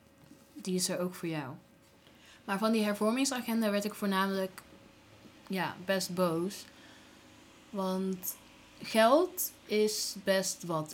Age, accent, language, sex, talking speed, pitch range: 20-39, Dutch, Dutch, female, 115 wpm, 170-210 Hz